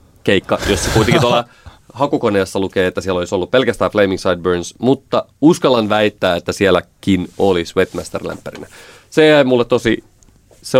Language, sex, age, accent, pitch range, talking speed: Finnish, male, 30-49, native, 90-105 Hz, 140 wpm